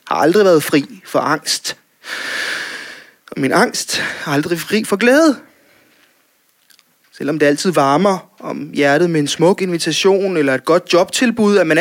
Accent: Danish